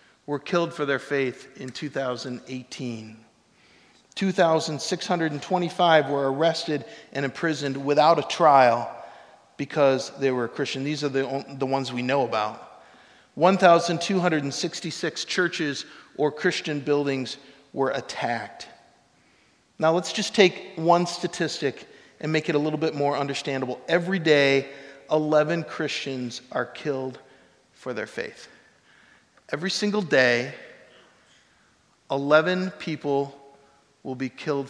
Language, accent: English, American